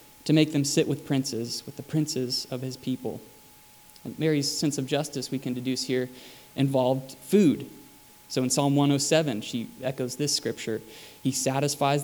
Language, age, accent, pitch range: English, 20-39, American, 130-160 Hz